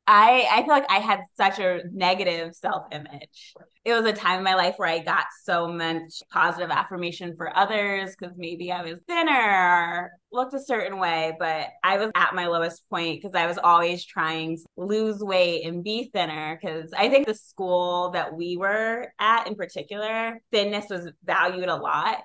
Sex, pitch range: female, 170-210 Hz